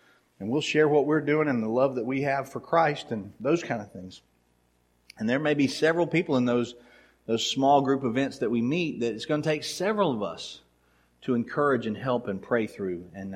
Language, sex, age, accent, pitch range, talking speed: English, male, 40-59, American, 110-140 Hz, 225 wpm